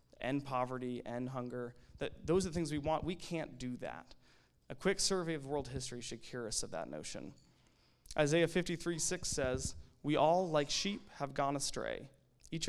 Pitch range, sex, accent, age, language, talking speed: 125-155 Hz, male, American, 20-39, English, 185 wpm